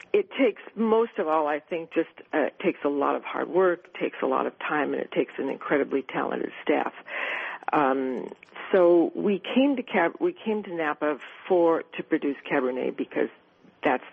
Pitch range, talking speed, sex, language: 140-185 Hz, 185 wpm, female, English